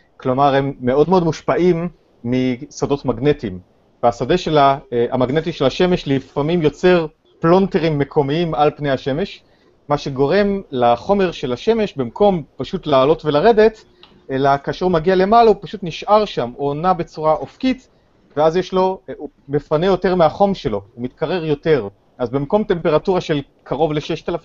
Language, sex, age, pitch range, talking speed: Hebrew, male, 30-49, 125-175 Hz, 140 wpm